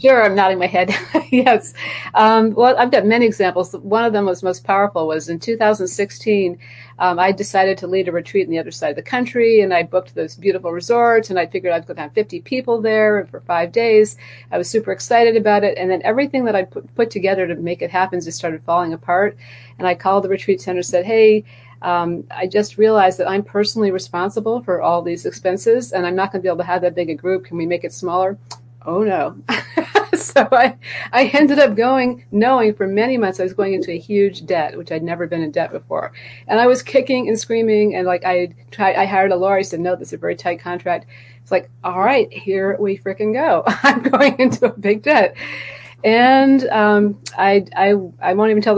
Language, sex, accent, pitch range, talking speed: English, female, American, 175-220 Hz, 225 wpm